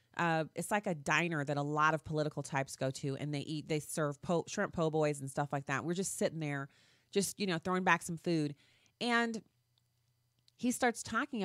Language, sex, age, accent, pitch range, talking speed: English, female, 30-49, American, 150-210 Hz, 205 wpm